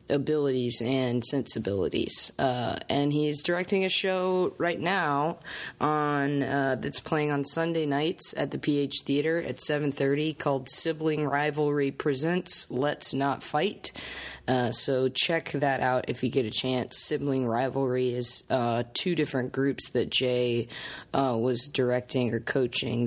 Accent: American